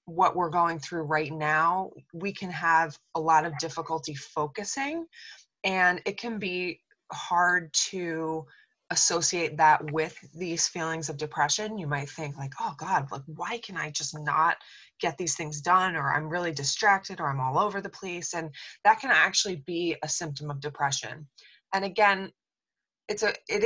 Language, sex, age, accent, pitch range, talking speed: English, female, 20-39, American, 150-175 Hz, 160 wpm